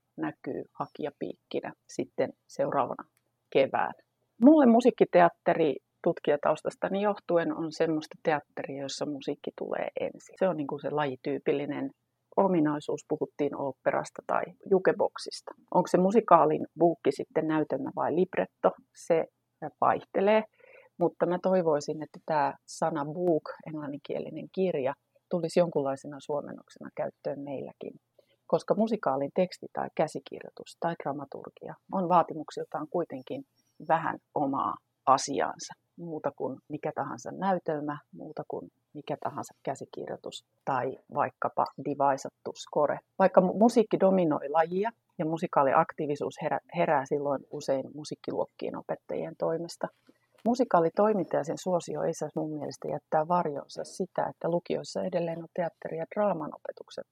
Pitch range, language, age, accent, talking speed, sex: 150-195 Hz, Finnish, 30-49, native, 110 wpm, female